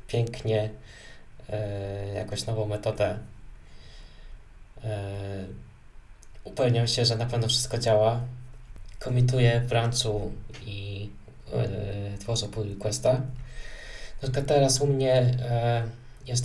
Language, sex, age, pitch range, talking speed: Polish, male, 20-39, 110-125 Hz, 95 wpm